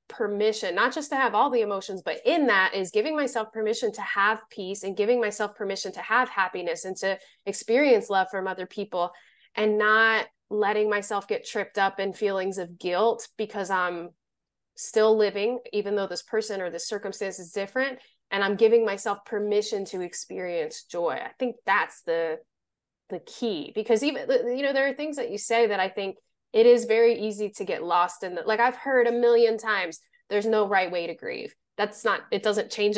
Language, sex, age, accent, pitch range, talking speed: English, female, 20-39, American, 195-235 Hz, 200 wpm